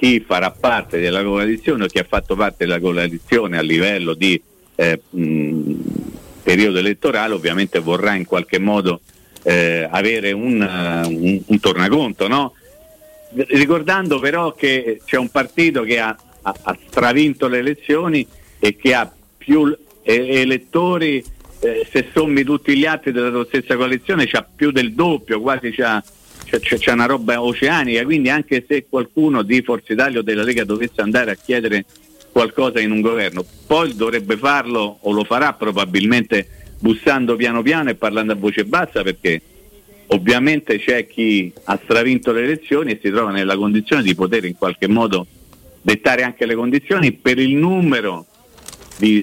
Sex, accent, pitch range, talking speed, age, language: male, native, 100-140 Hz, 160 wpm, 50-69, Italian